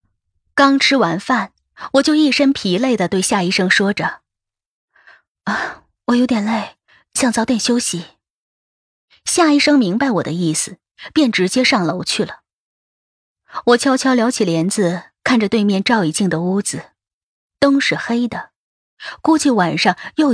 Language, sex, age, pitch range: Chinese, female, 20-39, 180-255 Hz